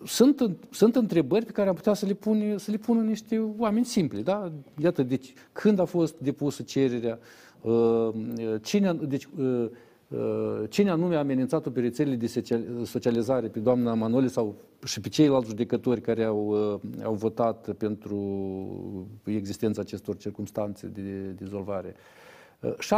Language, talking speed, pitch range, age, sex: Romanian, 135 wpm, 115-170 Hz, 50-69, male